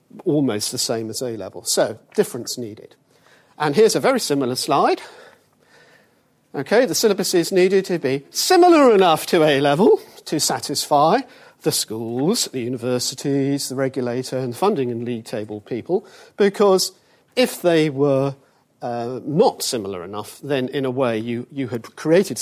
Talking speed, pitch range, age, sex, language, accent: 145 wpm, 120-185 Hz, 50-69, male, English, British